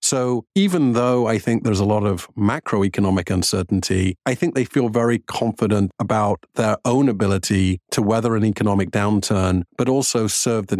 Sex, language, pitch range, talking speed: male, English, 100-120 Hz, 165 wpm